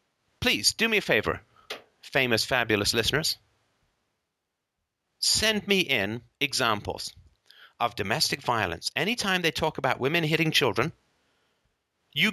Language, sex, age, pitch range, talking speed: English, male, 30-49, 125-185 Hz, 110 wpm